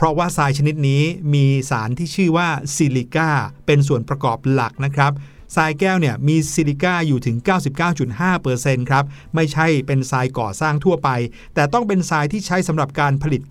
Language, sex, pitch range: Thai, male, 140-180 Hz